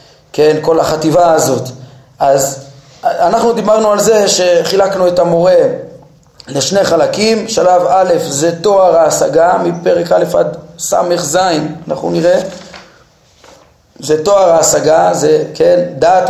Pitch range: 175-225 Hz